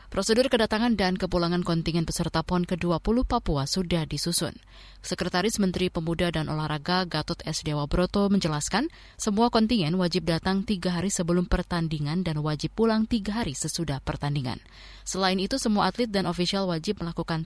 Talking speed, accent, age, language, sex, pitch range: 150 wpm, native, 20-39, Indonesian, female, 155-200 Hz